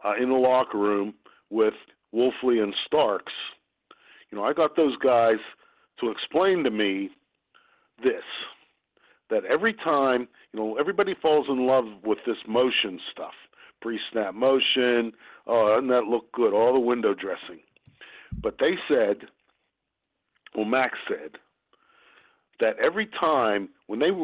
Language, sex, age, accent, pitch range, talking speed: English, male, 50-69, American, 115-170 Hz, 140 wpm